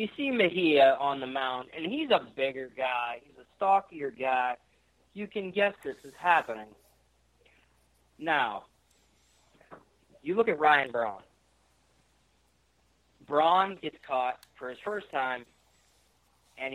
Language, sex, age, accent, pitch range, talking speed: English, male, 40-59, American, 115-190 Hz, 125 wpm